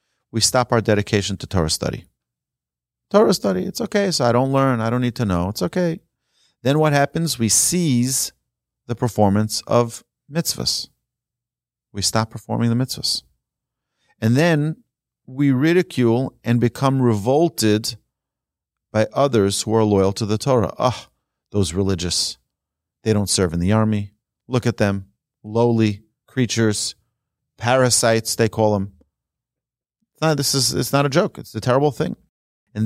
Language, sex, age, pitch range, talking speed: English, male, 40-59, 105-125 Hz, 150 wpm